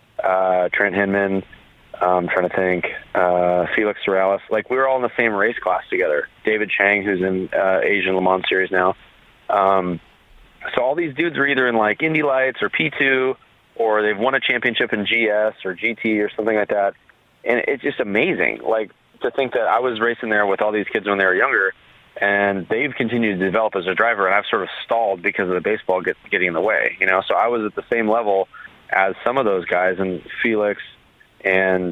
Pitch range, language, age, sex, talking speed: 95-115 Hz, English, 30-49, male, 215 wpm